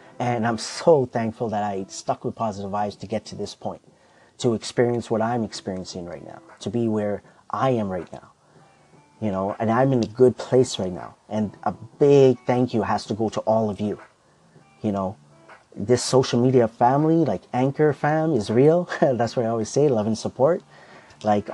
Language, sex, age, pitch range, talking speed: English, male, 30-49, 105-130 Hz, 200 wpm